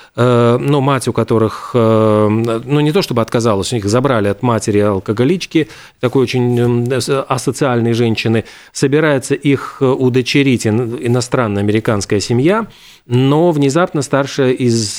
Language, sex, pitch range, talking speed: Russian, male, 115-145 Hz, 115 wpm